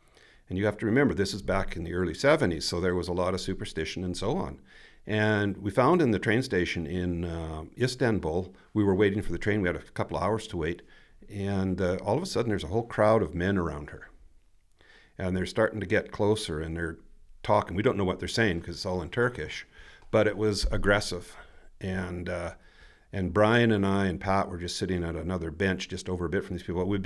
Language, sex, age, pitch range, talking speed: English, male, 50-69, 85-105 Hz, 235 wpm